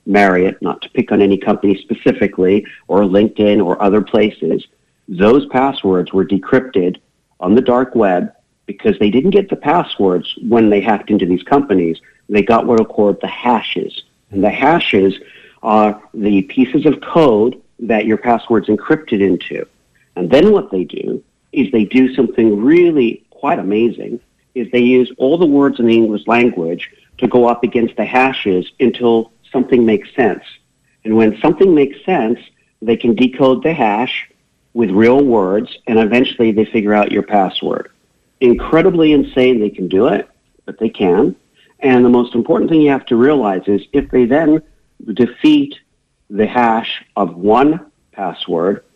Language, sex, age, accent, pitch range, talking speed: English, male, 50-69, American, 100-125 Hz, 165 wpm